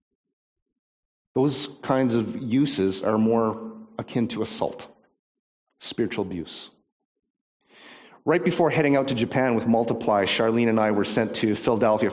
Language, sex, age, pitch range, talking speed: English, male, 40-59, 105-125 Hz, 130 wpm